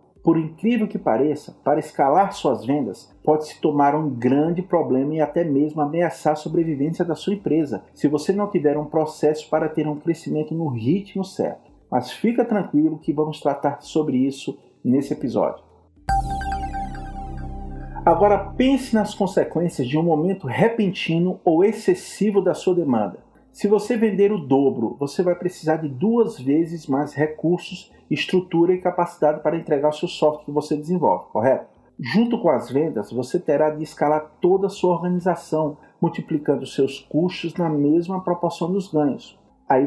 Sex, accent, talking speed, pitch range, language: male, Brazilian, 160 wpm, 150-180 Hz, Portuguese